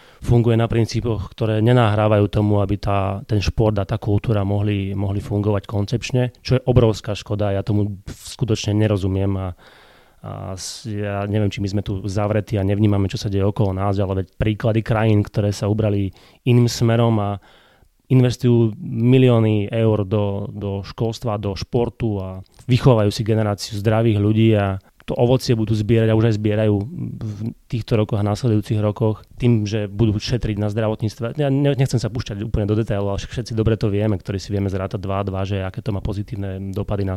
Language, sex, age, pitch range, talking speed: Slovak, male, 30-49, 100-115 Hz, 175 wpm